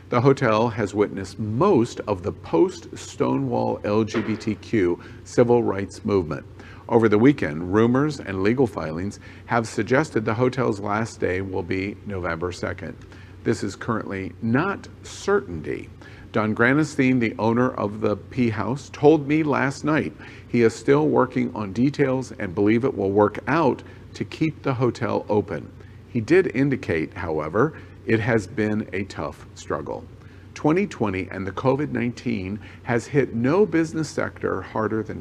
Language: English